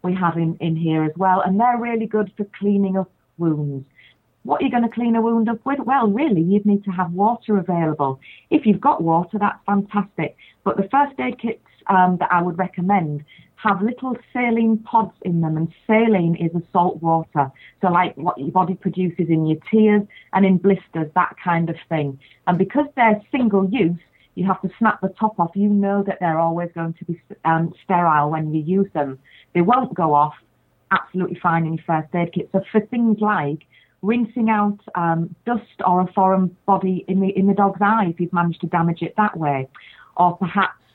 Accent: British